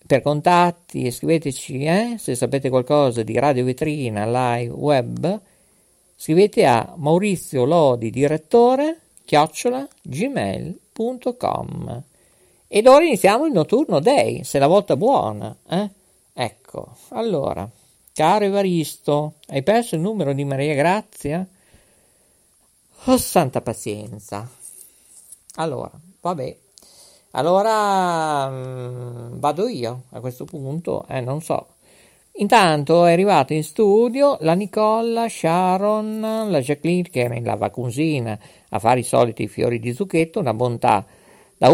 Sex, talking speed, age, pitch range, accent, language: male, 115 wpm, 50-69, 130-200 Hz, native, Italian